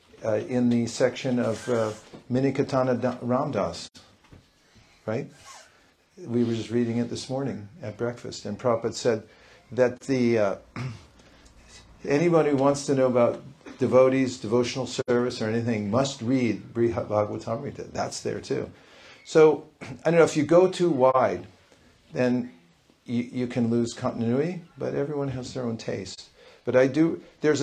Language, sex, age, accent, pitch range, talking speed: English, male, 50-69, American, 115-140 Hz, 145 wpm